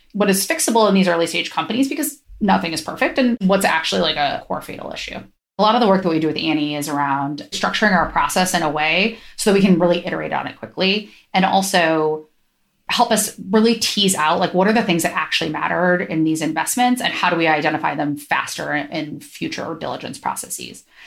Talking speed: 215 wpm